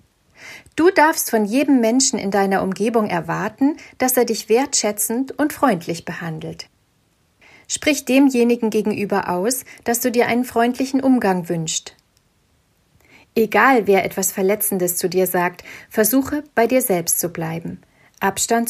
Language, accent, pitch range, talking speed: German, German, 185-250 Hz, 130 wpm